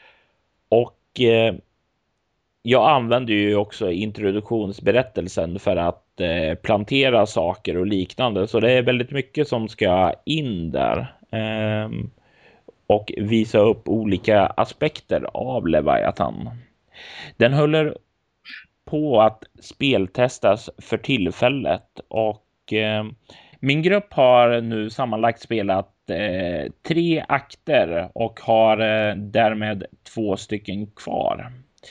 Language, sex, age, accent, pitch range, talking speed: Swedish, male, 30-49, native, 105-125 Hz, 95 wpm